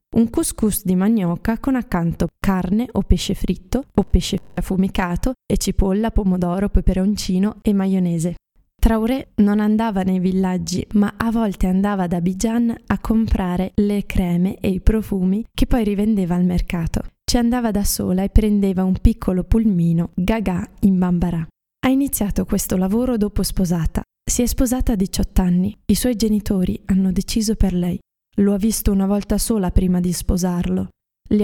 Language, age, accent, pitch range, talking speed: Italian, 20-39, native, 185-215 Hz, 160 wpm